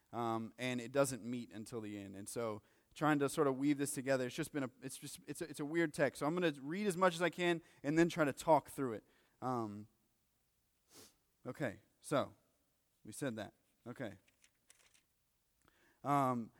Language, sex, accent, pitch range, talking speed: English, male, American, 120-170 Hz, 195 wpm